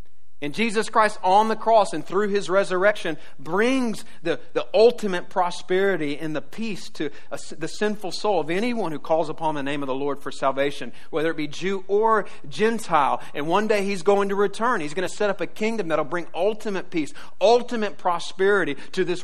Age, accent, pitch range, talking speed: 40-59, American, 140-210 Hz, 195 wpm